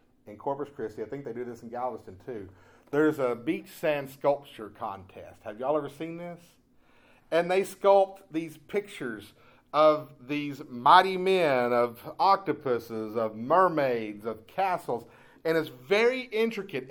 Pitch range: 120-180 Hz